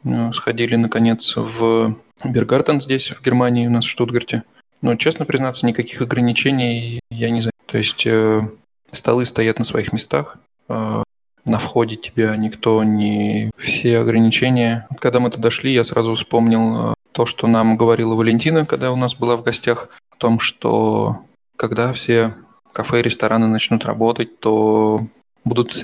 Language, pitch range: Russian, 110-120 Hz